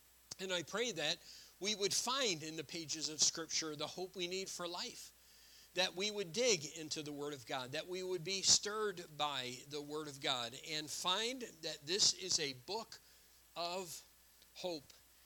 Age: 50-69